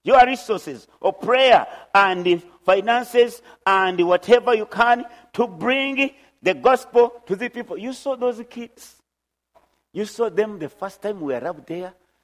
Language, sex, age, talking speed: English, male, 50-69, 145 wpm